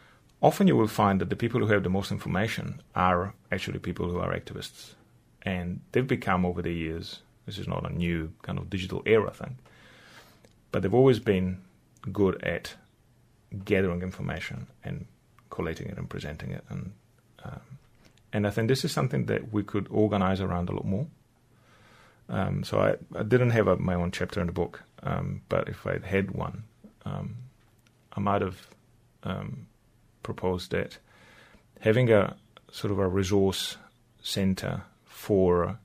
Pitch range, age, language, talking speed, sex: 90-115 Hz, 30-49, English, 160 wpm, male